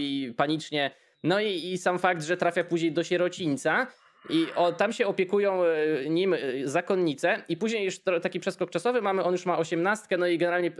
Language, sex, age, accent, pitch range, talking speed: Polish, male, 20-39, native, 150-180 Hz, 185 wpm